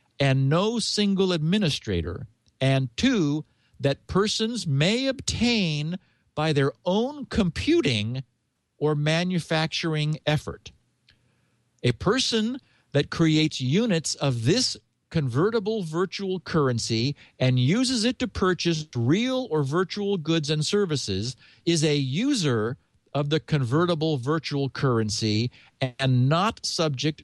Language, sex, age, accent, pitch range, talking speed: English, male, 50-69, American, 120-170 Hz, 110 wpm